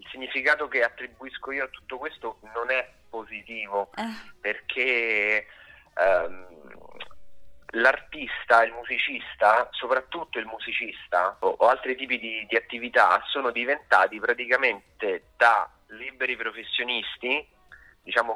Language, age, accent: Italian, 30-49, native